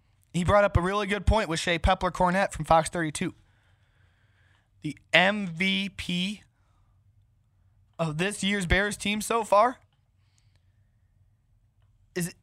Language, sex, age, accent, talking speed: English, male, 20-39, American, 115 wpm